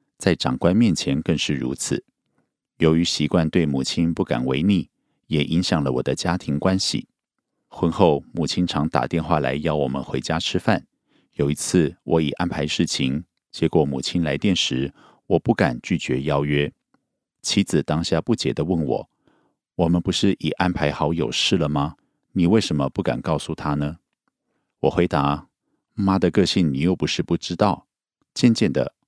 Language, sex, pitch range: Korean, male, 70-90 Hz